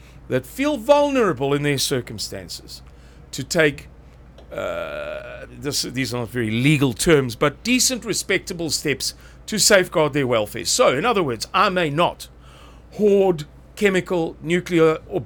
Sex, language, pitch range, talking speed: male, English, 135-185 Hz, 140 wpm